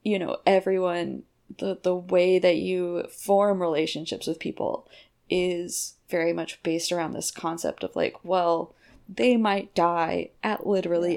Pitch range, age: 170-195 Hz, 20-39